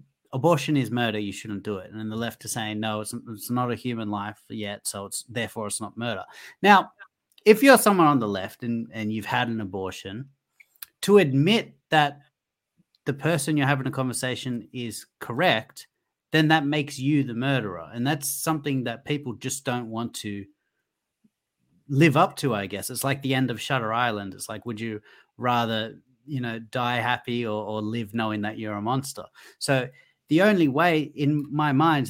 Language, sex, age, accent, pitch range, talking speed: English, male, 30-49, Australian, 105-135 Hz, 190 wpm